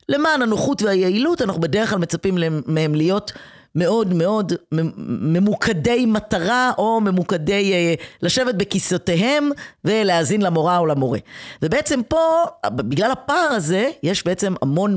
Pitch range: 165-225 Hz